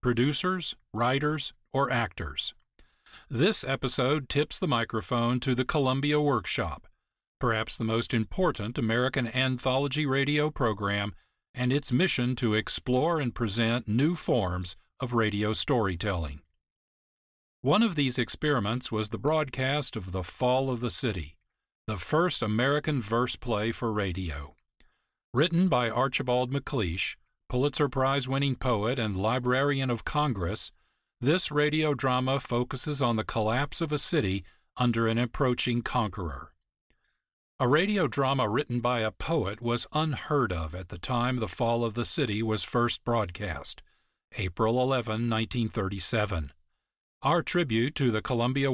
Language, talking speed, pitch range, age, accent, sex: English, 130 wpm, 110-135 Hz, 40-59, American, male